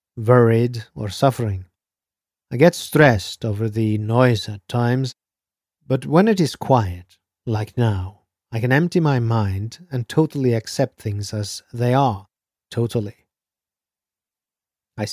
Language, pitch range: English, 110-130 Hz